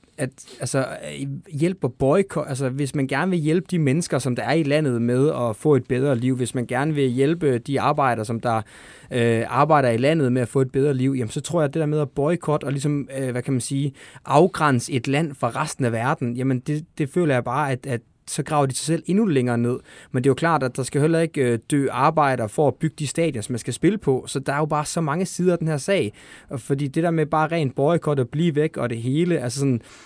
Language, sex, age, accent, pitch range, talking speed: Danish, male, 20-39, native, 120-150 Hz, 250 wpm